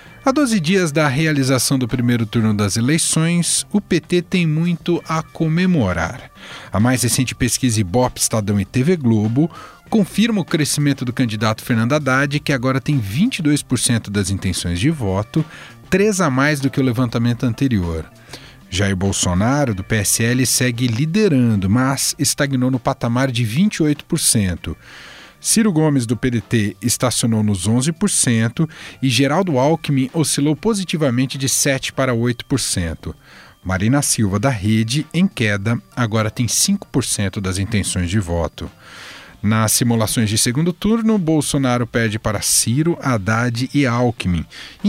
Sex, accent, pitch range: male, Brazilian, 110-150 Hz